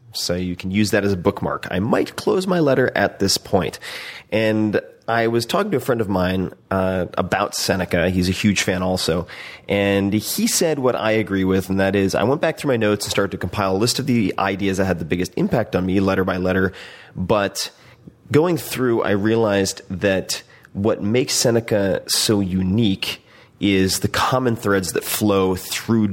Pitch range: 95-115 Hz